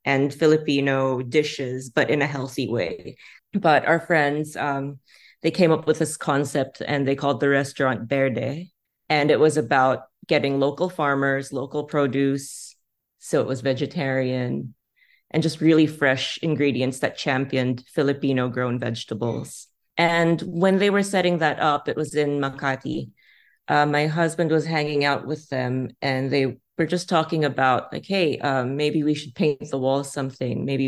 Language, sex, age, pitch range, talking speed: Filipino, female, 30-49, 135-155 Hz, 160 wpm